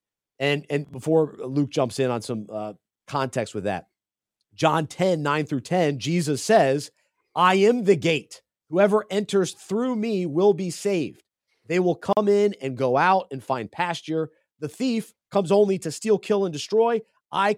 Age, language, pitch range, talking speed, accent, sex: 30-49, English, 135-180 Hz, 170 wpm, American, male